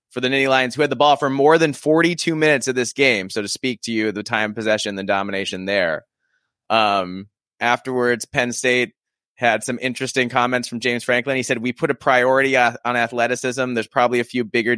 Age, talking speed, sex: 20-39, 205 wpm, male